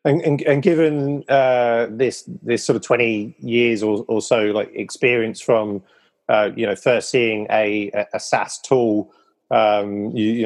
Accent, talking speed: British, 165 wpm